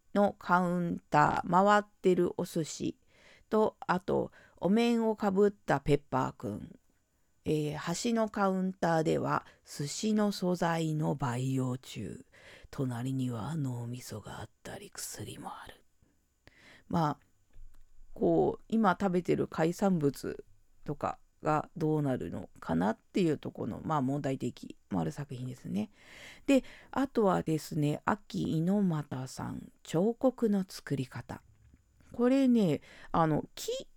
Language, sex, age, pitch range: Japanese, female, 40-59, 145-215 Hz